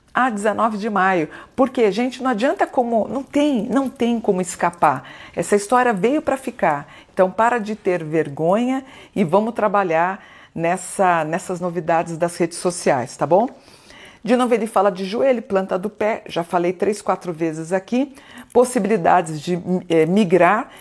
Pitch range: 180-235 Hz